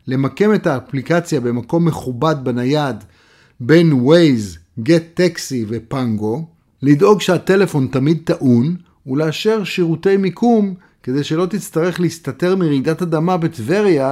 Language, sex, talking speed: Hebrew, male, 105 wpm